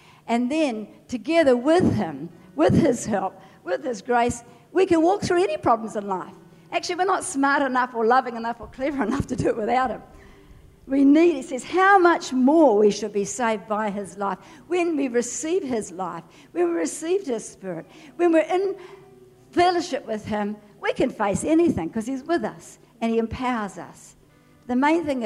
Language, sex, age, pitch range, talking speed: English, female, 60-79, 215-330 Hz, 190 wpm